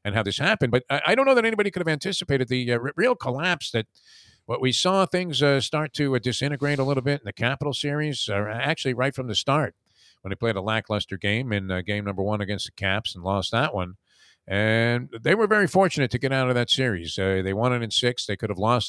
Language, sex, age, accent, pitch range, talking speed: English, male, 50-69, American, 105-150 Hz, 250 wpm